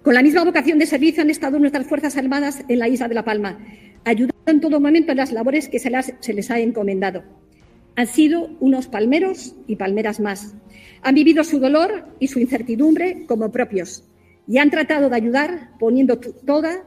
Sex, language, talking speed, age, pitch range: female, Spanish, 185 wpm, 50-69, 215-285 Hz